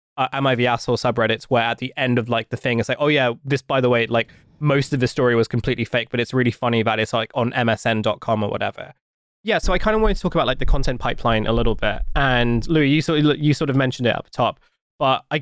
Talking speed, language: 270 wpm, English